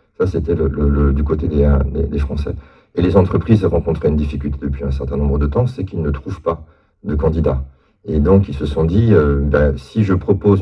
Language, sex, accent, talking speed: French, male, French, 225 wpm